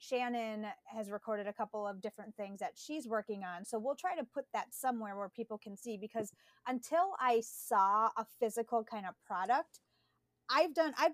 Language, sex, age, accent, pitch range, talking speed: English, female, 30-49, American, 210-250 Hz, 190 wpm